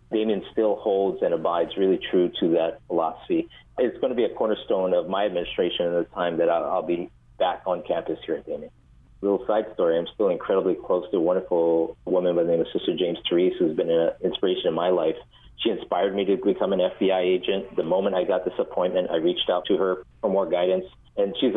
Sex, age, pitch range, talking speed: male, 40-59, 85-115 Hz, 225 wpm